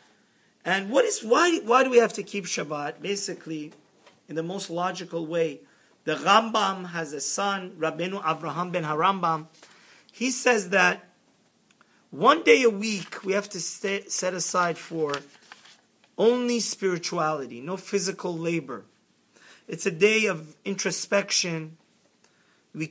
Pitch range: 160-200 Hz